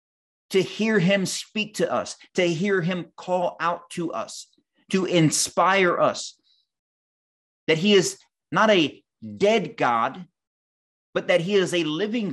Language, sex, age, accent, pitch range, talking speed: English, male, 30-49, American, 150-195 Hz, 140 wpm